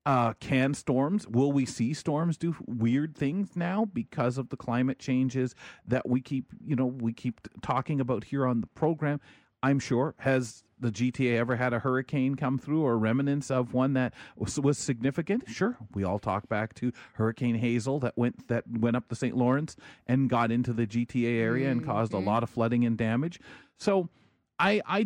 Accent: American